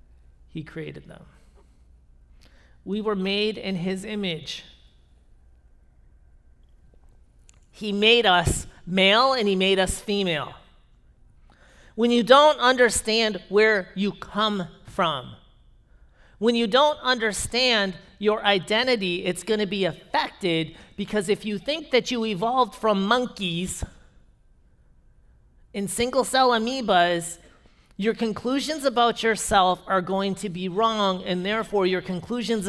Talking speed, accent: 115 wpm, American